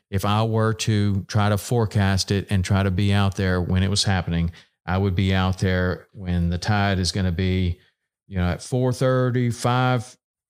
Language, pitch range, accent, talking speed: English, 95-120 Hz, American, 205 wpm